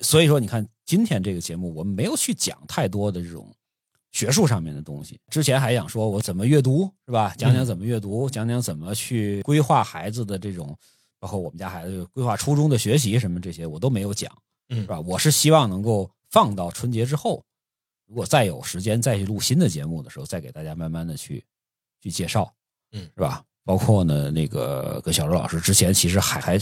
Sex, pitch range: male, 90-120 Hz